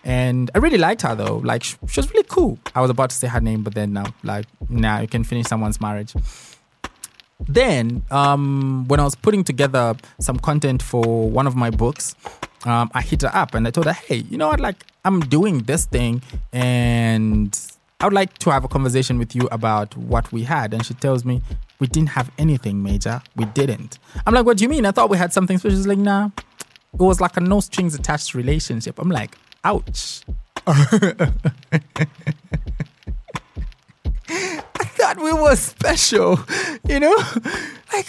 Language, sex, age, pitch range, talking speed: English, male, 20-39, 115-170 Hz, 185 wpm